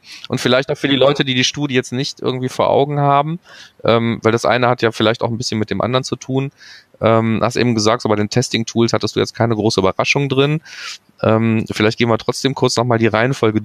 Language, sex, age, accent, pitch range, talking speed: German, male, 20-39, German, 105-125 Hz, 235 wpm